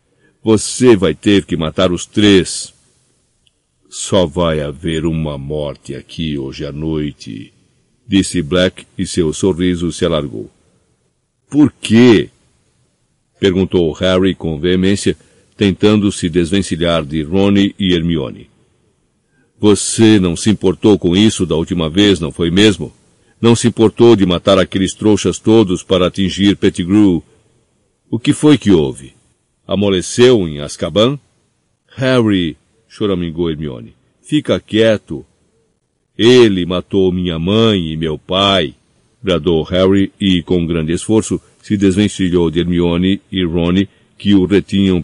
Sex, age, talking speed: male, 60-79, 130 wpm